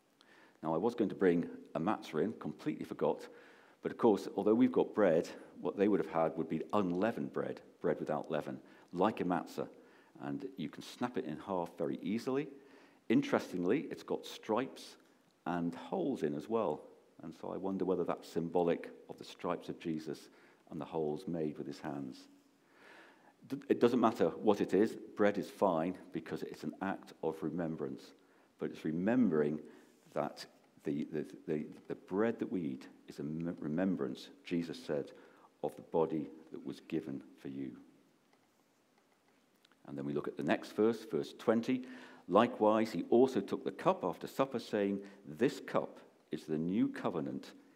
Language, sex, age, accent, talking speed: English, male, 50-69, British, 165 wpm